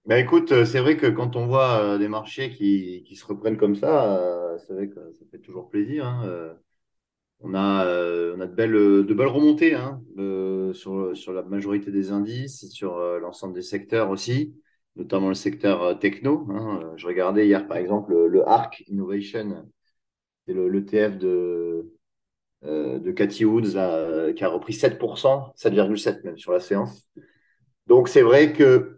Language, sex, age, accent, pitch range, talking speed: French, male, 30-49, French, 95-125 Hz, 165 wpm